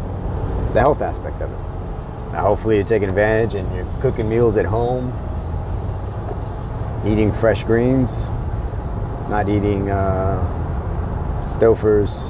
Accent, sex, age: American, male, 30-49